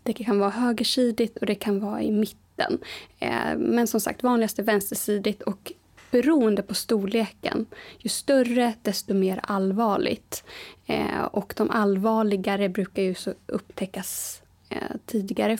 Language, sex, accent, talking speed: Swedish, female, native, 125 wpm